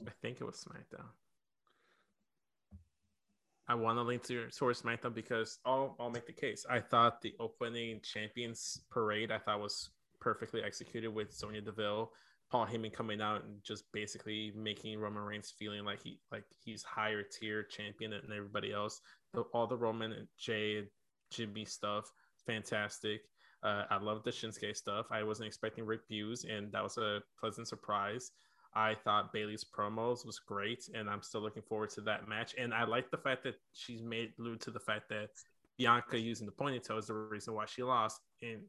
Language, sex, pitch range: English, male, 105-120 Hz